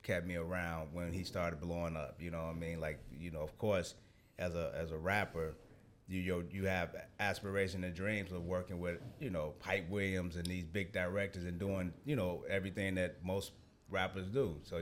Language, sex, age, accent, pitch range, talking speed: English, male, 30-49, American, 90-105 Hz, 205 wpm